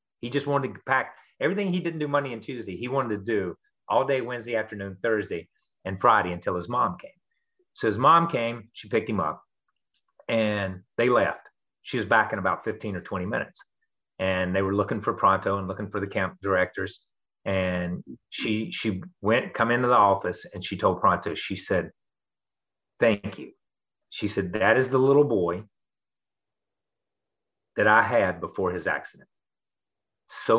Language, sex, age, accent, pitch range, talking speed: English, male, 30-49, American, 95-125 Hz, 175 wpm